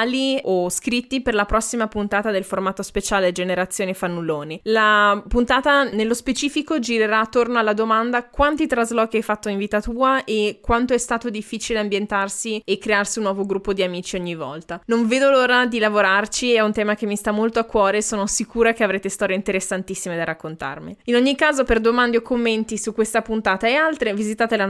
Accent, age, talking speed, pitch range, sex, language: native, 20-39, 190 wpm, 195-240 Hz, female, Italian